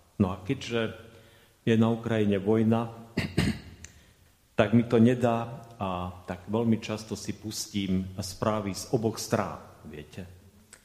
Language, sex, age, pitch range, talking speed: Slovak, male, 40-59, 100-120 Hz, 120 wpm